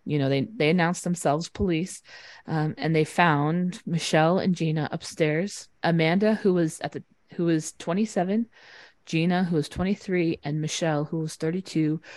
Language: English